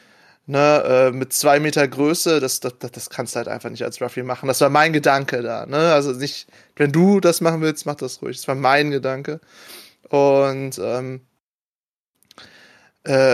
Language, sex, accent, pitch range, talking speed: German, male, German, 135-165 Hz, 175 wpm